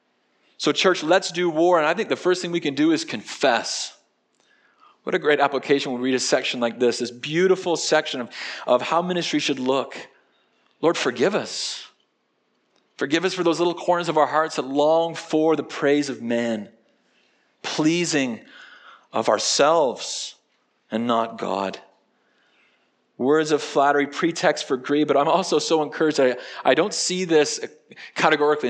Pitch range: 145-185 Hz